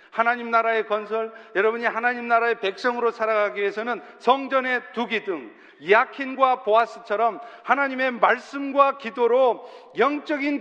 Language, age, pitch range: Korean, 40-59, 225-280 Hz